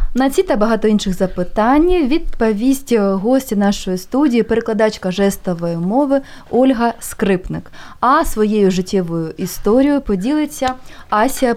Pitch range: 190-255 Hz